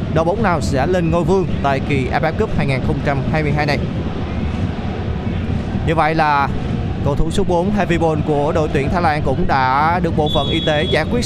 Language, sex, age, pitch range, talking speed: Vietnamese, male, 20-39, 160-220 Hz, 185 wpm